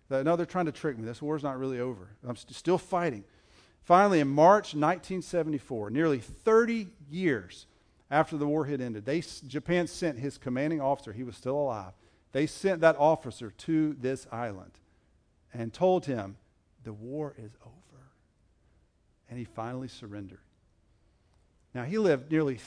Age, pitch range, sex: 50-69, 120-175 Hz, male